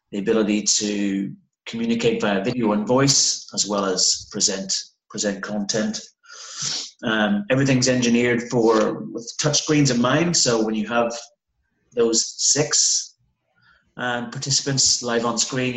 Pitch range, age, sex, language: 105-130 Hz, 30-49, male, English